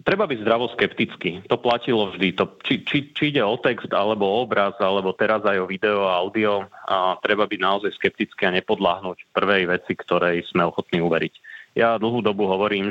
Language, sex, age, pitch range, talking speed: Slovak, male, 30-49, 95-110 Hz, 185 wpm